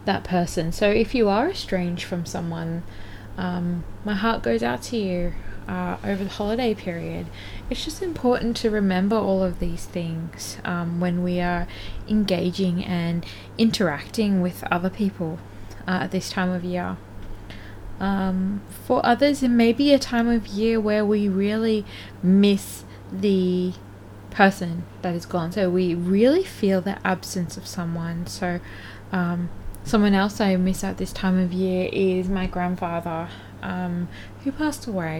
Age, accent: 20-39, Australian